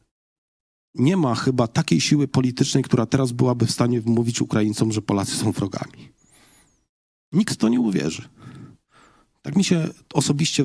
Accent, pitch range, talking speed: native, 110-135 Hz, 145 wpm